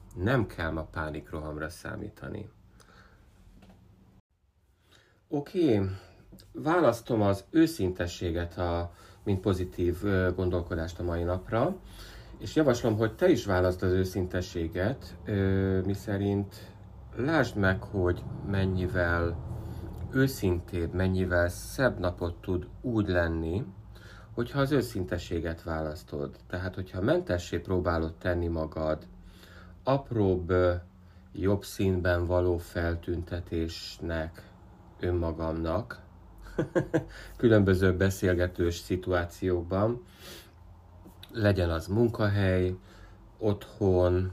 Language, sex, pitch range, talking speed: Hungarian, male, 85-100 Hz, 85 wpm